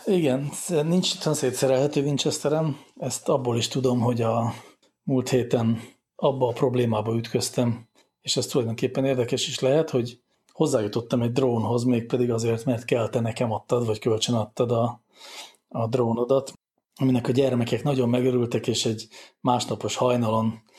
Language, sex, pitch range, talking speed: English, male, 110-130 Hz, 140 wpm